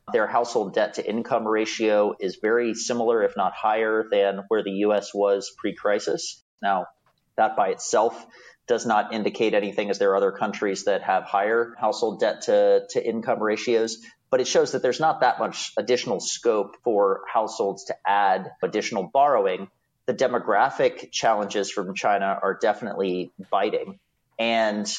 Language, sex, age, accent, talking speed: English, male, 30-49, American, 145 wpm